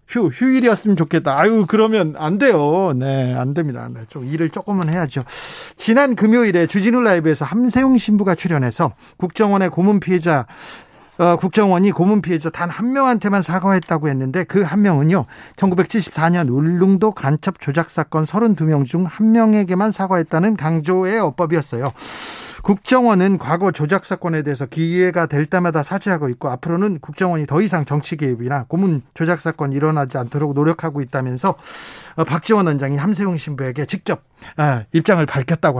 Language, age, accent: Korean, 40-59, native